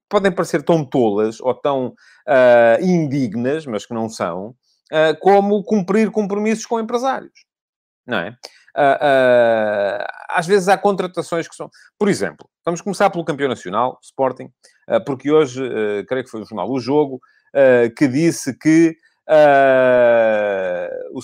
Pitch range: 120-160 Hz